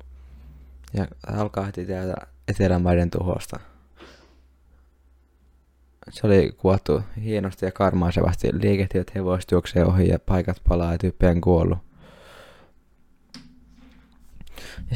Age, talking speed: 20-39, 90 wpm